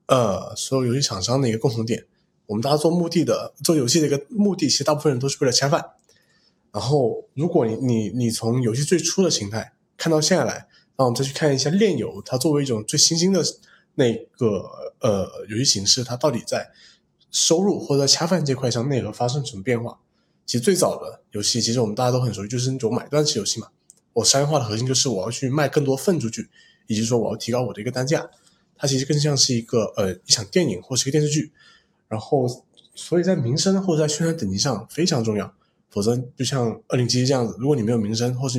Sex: male